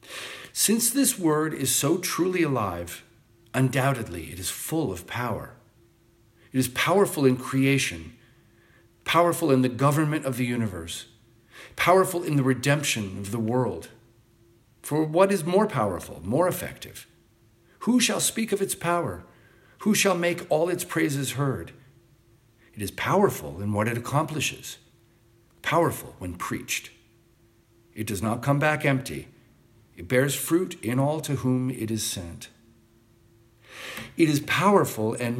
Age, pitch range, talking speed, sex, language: 50-69, 115-155 Hz, 140 wpm, male, English